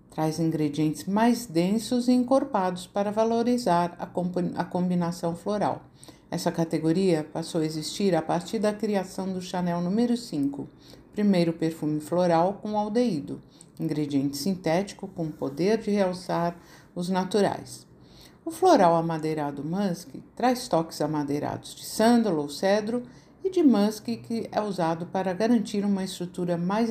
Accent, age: Brazilian, 50-69